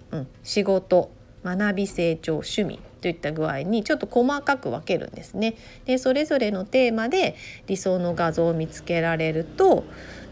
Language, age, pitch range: Japanese, 30-49, 170-255 Hz